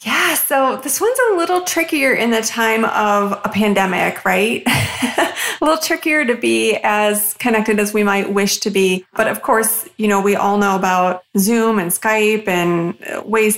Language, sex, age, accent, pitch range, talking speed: English, female, 30-49, American, 195-225 Hz, 180 wpm